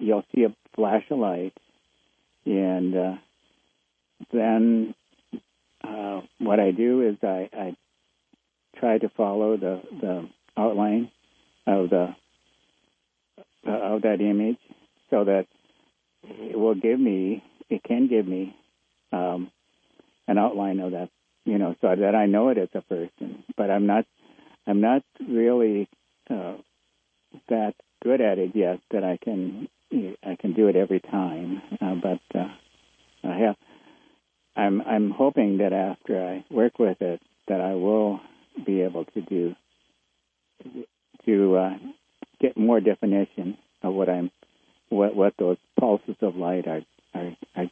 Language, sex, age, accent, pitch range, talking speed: English, male, 60-79, American, 90-110 Hz, 140 wpm